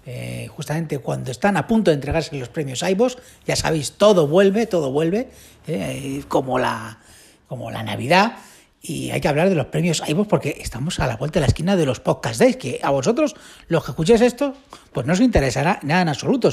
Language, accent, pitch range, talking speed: Spanish, Spanish, 145-200 Hz, 205 wpm